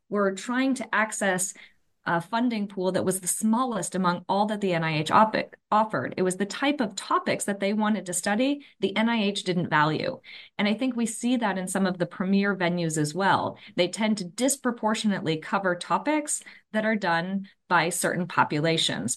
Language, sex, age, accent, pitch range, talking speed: English, female, 20-39, American, 160-215 Hz, 185 wpm